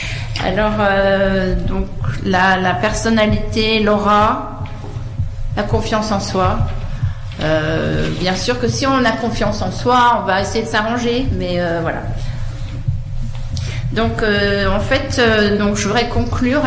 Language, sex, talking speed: French, female, 135 wpm